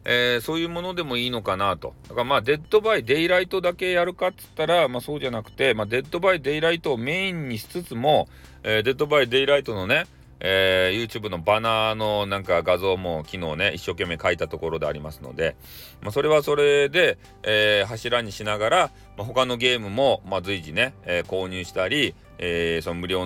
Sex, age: male, 40-59